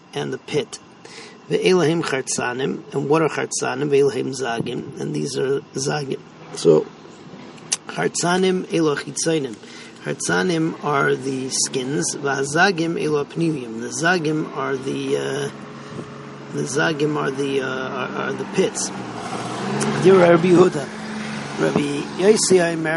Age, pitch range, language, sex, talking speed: 40-59, 140-185 Hz, English, male, 120 wpm